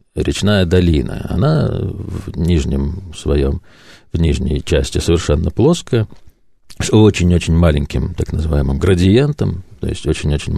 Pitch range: 80-115 Hz